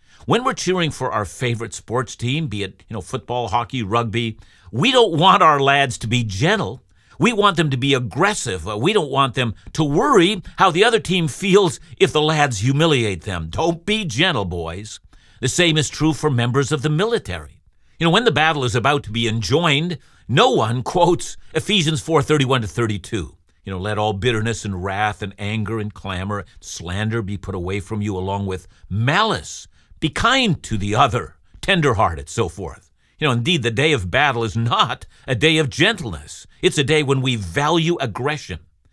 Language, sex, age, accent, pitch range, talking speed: English, male, 50-69, American, 105-150 Hz, 195 wpm